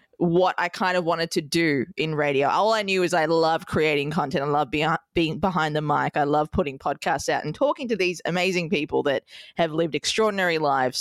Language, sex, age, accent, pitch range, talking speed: English, female, 20-39, Australian, 150-210 Hz, 215 wpm